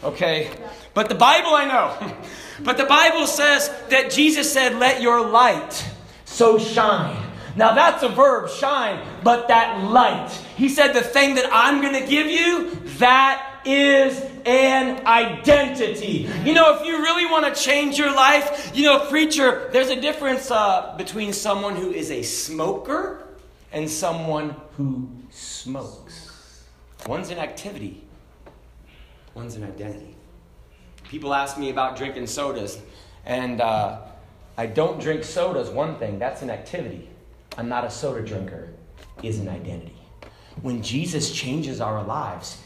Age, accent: 30-49, American